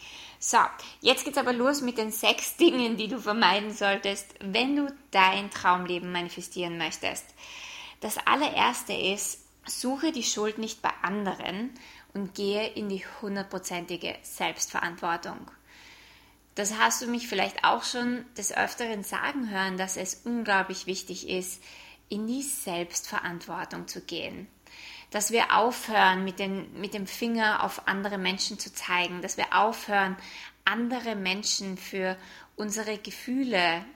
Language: German